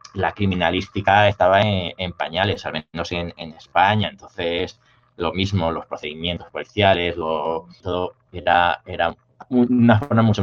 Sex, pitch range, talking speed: male, 90-110 Hz, 130 wpm